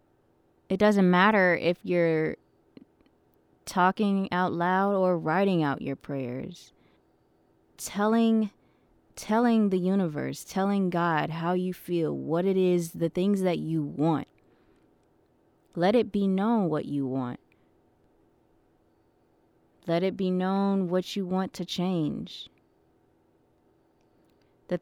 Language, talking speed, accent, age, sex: English, 115 wpm, American, 20-39, female